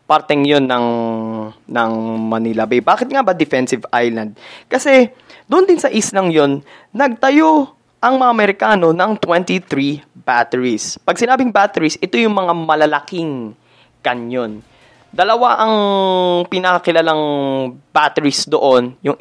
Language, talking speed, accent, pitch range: Filipino, 120 wpm, native, 130-200 Hz